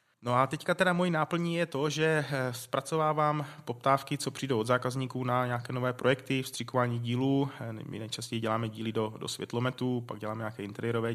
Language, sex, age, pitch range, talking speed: Czech, male, 20-39, 115-130 Hz, 170 wpm